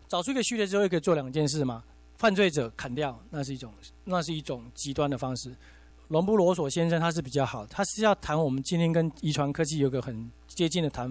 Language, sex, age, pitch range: Chinese, male, 40-59, 125-180 Hz